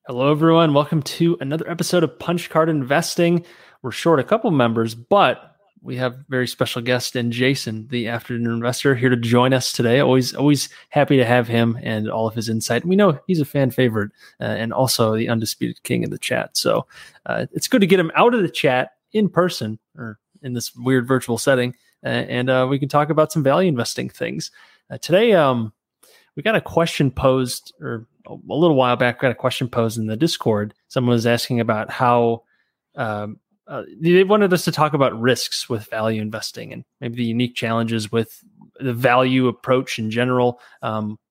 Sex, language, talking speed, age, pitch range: male, English, 200 wpm, 30-49, 115-145 Hz